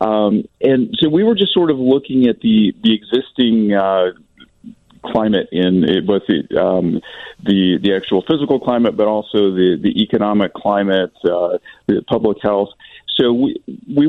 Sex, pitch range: male, 95-130 Hz